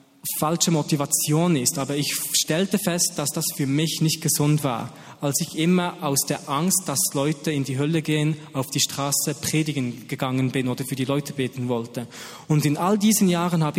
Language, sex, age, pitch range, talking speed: German, male, 20-39, 140-165 Hz, 190 wpm